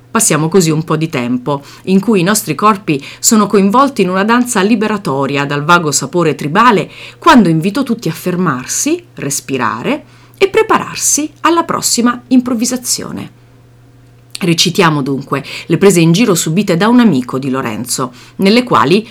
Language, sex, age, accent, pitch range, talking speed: Italian, female, 30-49, native, 140-225 Hz, 145 wpm